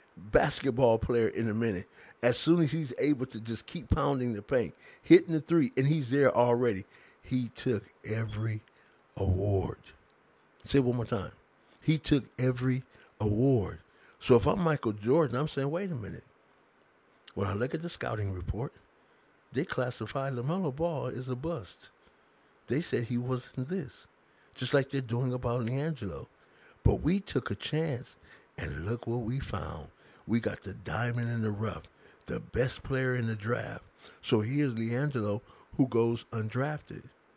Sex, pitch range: male, 110-145 Hz